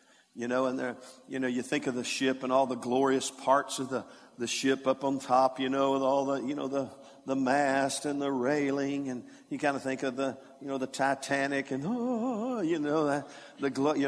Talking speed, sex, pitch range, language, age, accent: 230 wpm, male, 130-145 Hz, English, 50-69, American